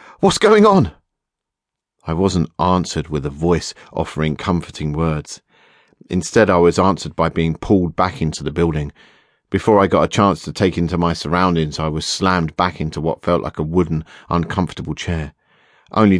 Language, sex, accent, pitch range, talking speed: English, male, British, 80-90 Hz, 170 wpm